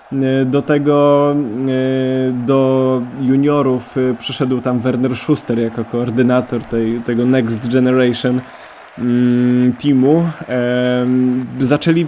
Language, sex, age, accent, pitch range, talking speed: Polish, male, 20-39, native, 125-145 Hz, 75 wpm